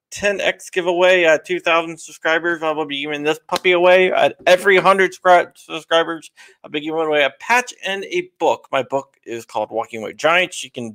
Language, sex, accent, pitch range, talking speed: English, male, American, 125-180 Hz, 185 wpm